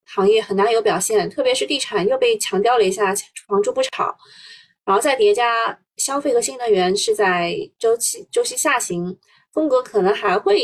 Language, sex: Chinese, female